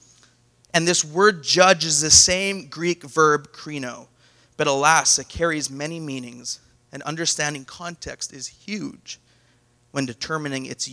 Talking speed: 130 wpm